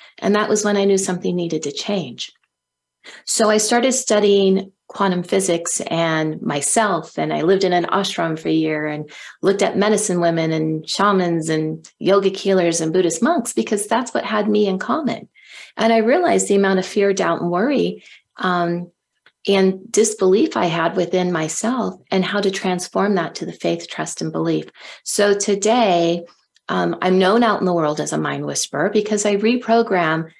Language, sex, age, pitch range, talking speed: English, female, 40-59, 165-210 Hz, 180 wpm